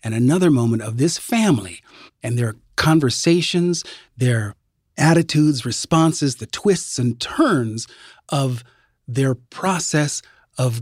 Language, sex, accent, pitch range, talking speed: English, male, American, 120-155 Hz, 110 wpm